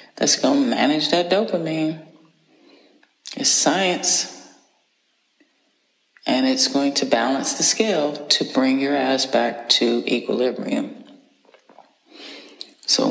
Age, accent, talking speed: 30-49, American, 105 wpm